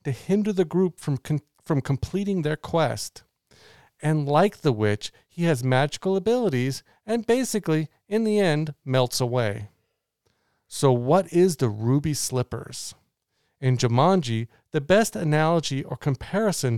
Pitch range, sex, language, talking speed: 125-175 Hz, male, English, 135 wpm